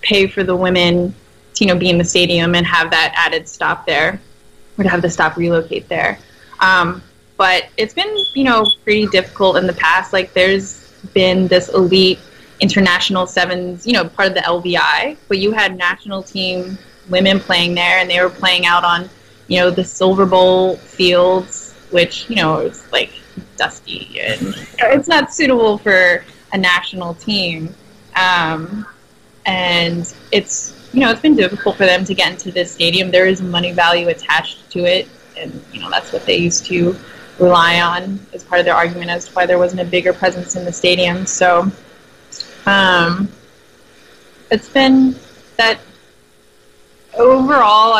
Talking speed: 170 wpm